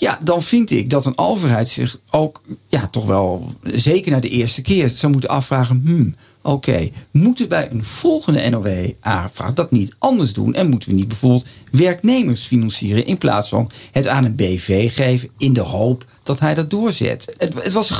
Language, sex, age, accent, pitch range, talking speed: Dutch, male, 50-69, Dutch, 115-150 Hz, 195 wpm